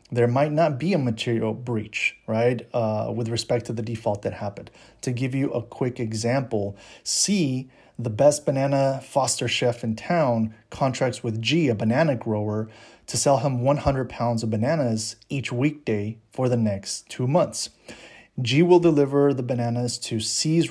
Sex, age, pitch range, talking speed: male, 30-49, 115-140 Hz, 165 wpm